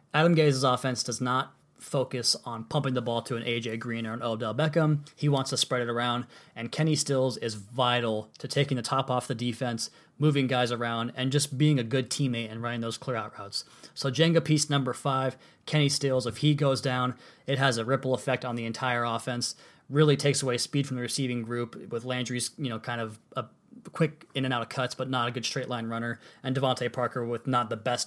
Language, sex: English, male